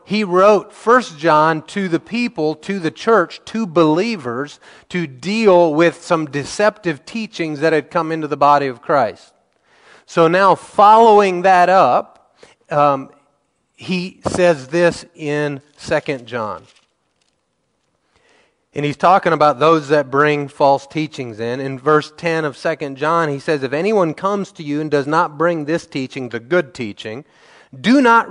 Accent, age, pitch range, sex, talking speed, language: American, 40-59, 140-180 Hz, male, 155 wpm, English